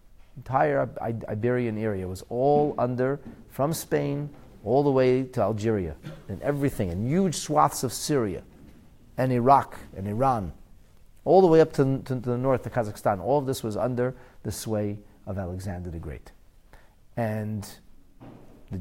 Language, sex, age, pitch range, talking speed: English, male, 40-59, 100-130 Hz, 145 wpm